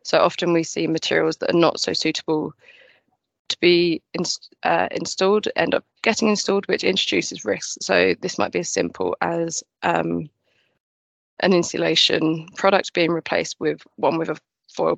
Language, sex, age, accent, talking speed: English, female, 20-39, British, 155 wpm